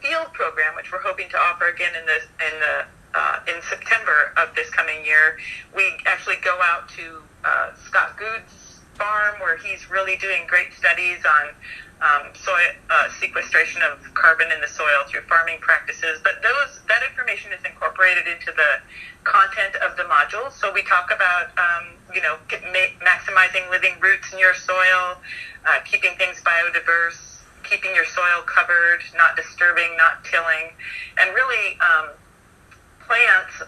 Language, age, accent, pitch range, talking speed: English, 30-49, American, 170-190 Hz, 155 wpm